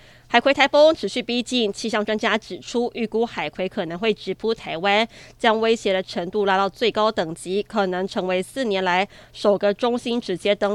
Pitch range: 190-235 Hz